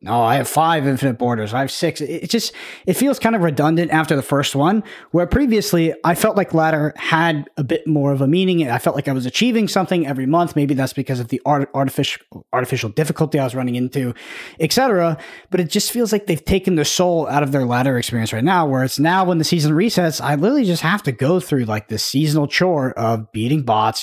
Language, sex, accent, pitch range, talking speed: English, male, American, 140-175 Hz, 235 wpm